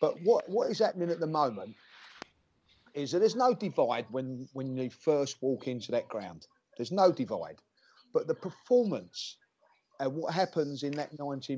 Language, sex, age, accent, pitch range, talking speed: English, male, 40-59, British, 130-165 Hz, 170 wpm